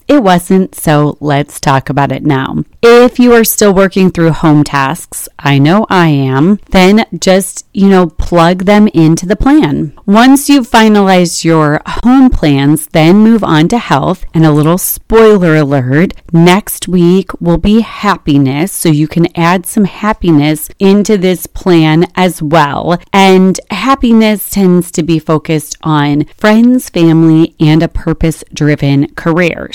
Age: 30-49